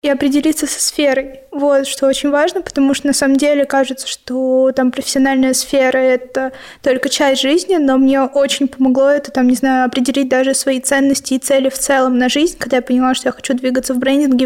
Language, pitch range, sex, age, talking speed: Russian, 255-280 Hz, female, 20-39, 205 wpm